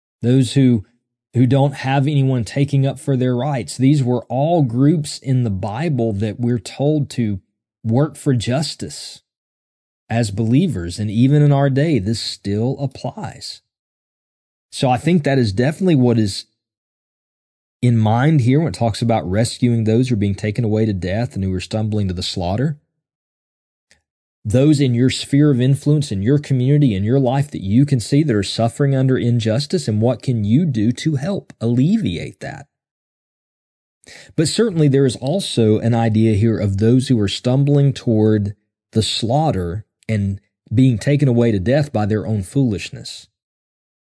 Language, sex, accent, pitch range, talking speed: English, male, American, 110-140 Hz, 165 wpm